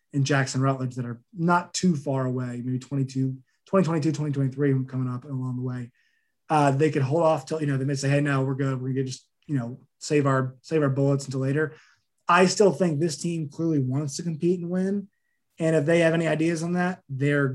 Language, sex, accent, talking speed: English, male, American, 220 wpm